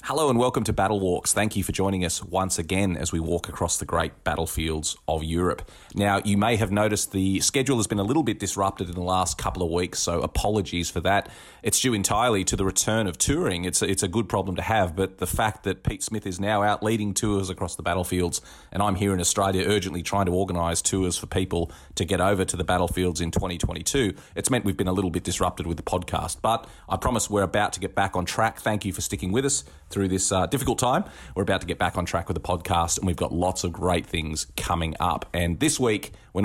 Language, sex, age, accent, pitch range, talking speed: English, male, 30-49, Australian, 90-105 Hz, 245 wpm